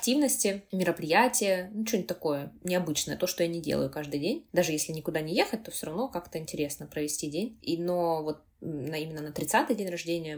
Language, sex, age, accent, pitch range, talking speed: Russian, female, 20-39, native, 155-180 Hz, 185 wpm